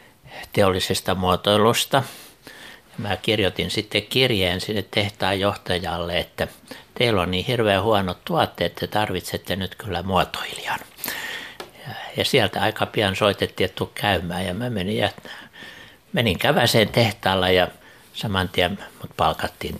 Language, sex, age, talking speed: Finnish, male, 60-79, 115 wpm